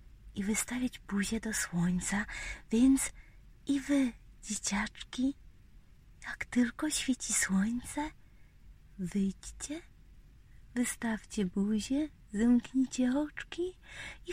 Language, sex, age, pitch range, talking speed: Polish, female, 30-49, 205-265 Hz, 80 wpm